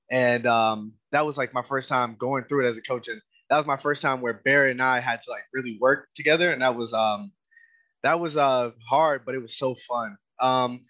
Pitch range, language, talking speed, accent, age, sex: 120-140 Hz, English, 240 wpm, American, 20-39, male